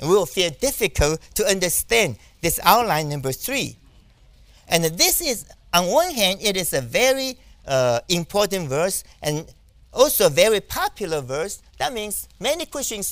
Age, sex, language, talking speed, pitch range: 50-69, male, English, 150 wpm, 145-225 Hz